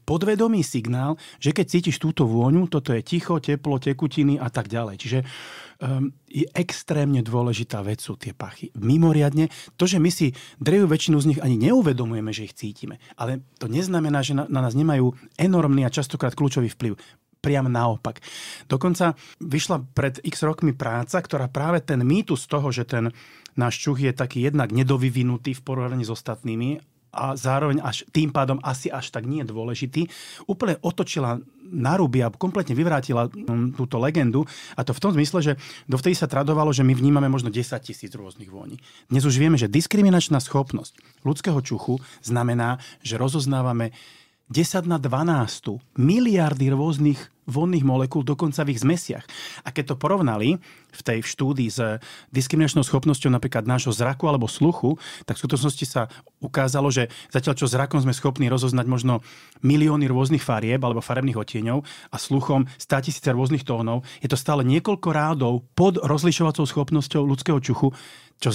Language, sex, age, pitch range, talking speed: Slovak, male, 30-49, 125-155 Hz, 160 wpm